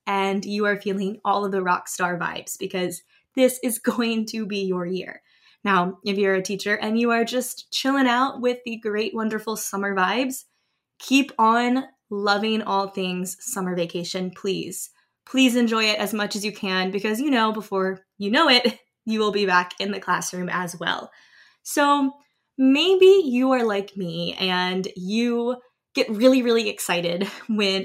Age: 10-29